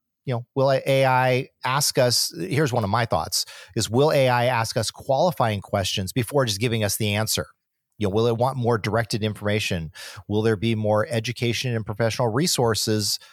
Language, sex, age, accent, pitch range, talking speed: English, male, 30-49, American, 105-135 Hz, 180 wpm